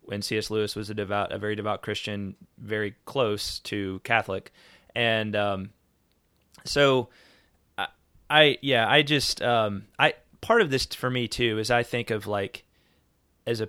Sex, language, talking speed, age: male, English, 160 wpm, 20-39